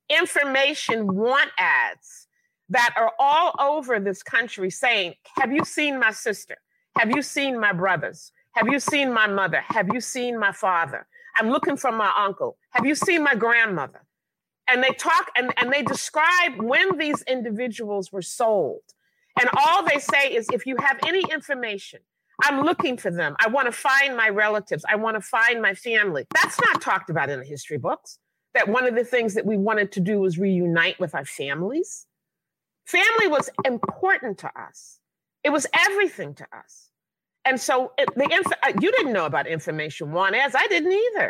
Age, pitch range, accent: 50-69, 215-315 Hz, American